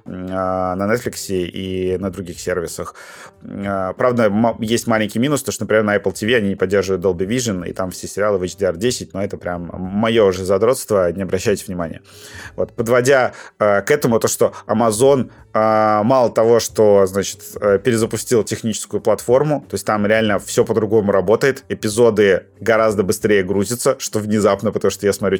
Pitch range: 95-115 Hz